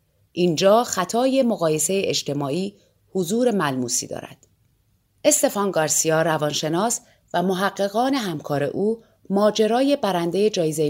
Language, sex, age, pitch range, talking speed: Persian, female, 30-49, 155-225 Hz, 95 wpm